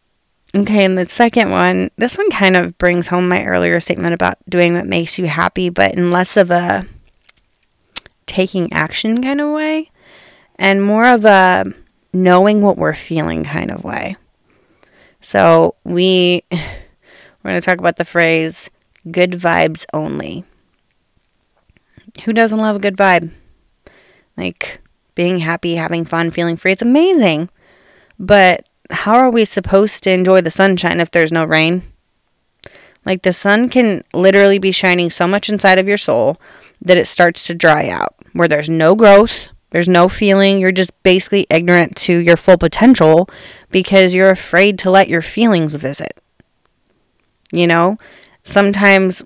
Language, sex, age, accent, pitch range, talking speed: English, female, 20-39, American, 170-205 Hz, 155 wpm